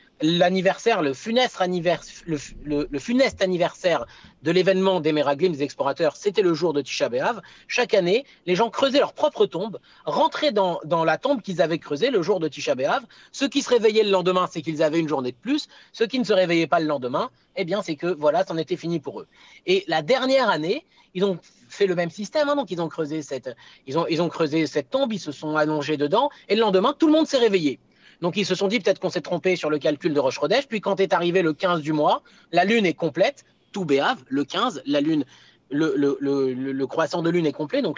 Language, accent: French, French